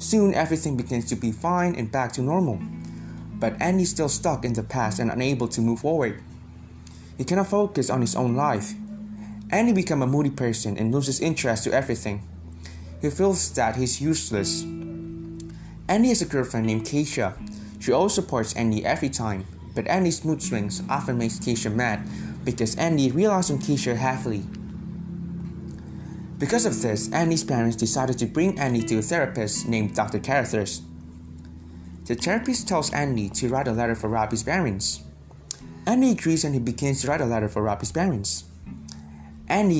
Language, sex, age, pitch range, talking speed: English, male, 20-39, 110-165 Hz, 165 wpm